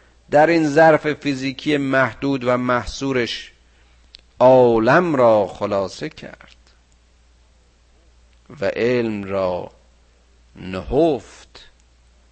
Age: 50-69